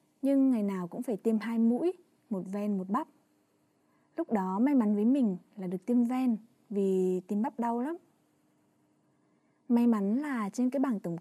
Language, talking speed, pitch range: Vietnamese, 180 wpm, 205-265 Hz